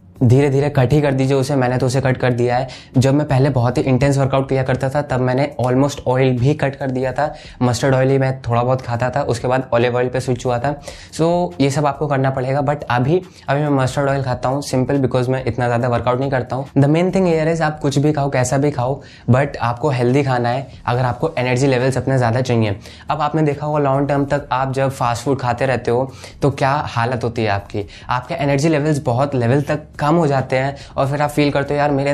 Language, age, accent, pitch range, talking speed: Hindi, 20-39, native, 125-145 Hz, 245 wpm